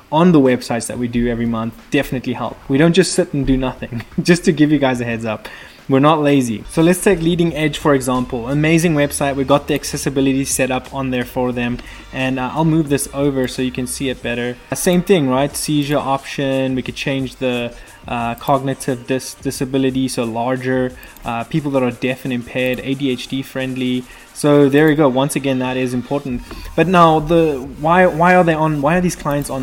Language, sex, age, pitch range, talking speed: English, male, 20-39, 125-150 Hz, 215 wpm